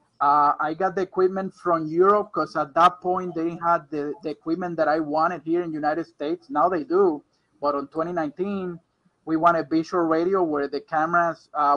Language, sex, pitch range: English, male, 155-185 Hz